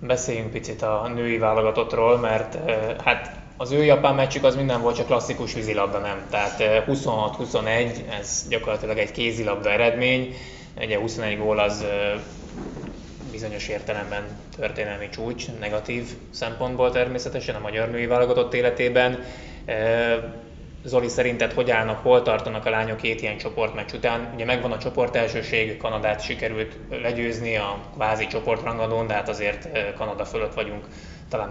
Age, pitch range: 20-39, 105-120 Hz